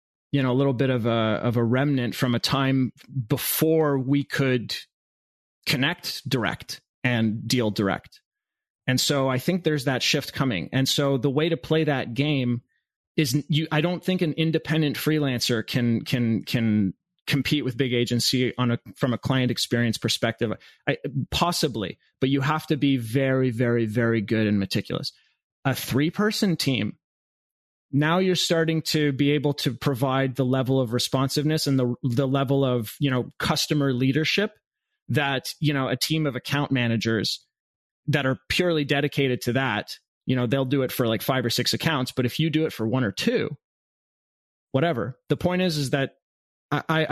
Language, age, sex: English, 30-49, male